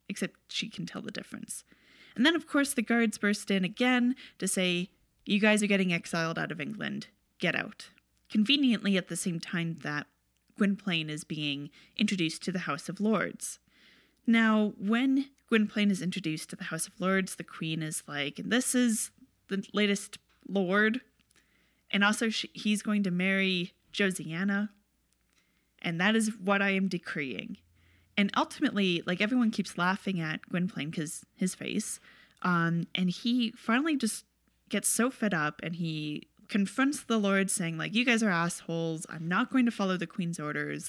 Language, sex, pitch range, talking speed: English, female, 175-225 Hz, 165 wpm